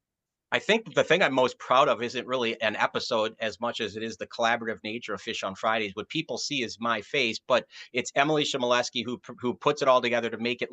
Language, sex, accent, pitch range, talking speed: English, male, American, 120-140 Hz, 240 wpm